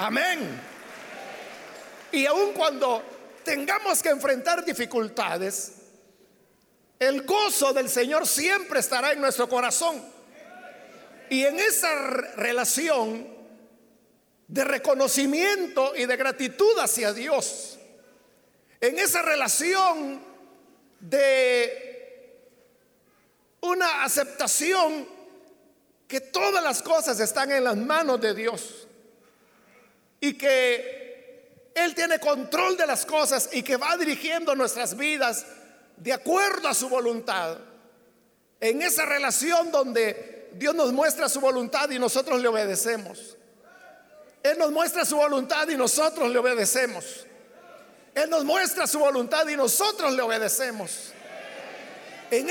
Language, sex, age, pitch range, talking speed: Spanish, male, 50-69, 245-335 Hz, 110 wpm